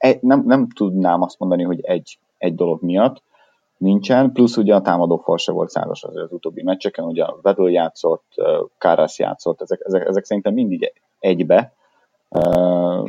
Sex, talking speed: male, 165 wpm